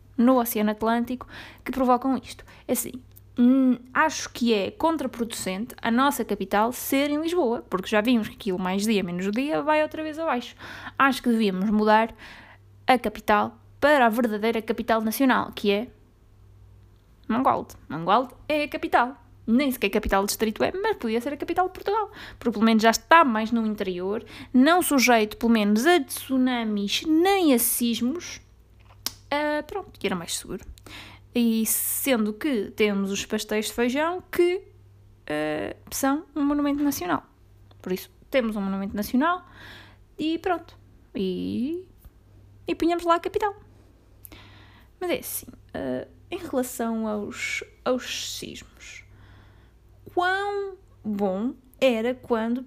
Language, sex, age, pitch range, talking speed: Portuguese, female, 20-39, 205-285 Hz, 140 wpm